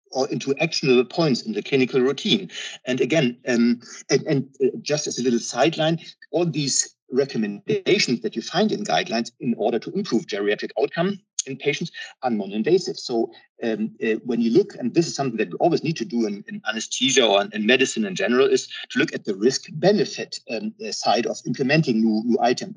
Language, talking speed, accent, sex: English, 190 wpm, German, male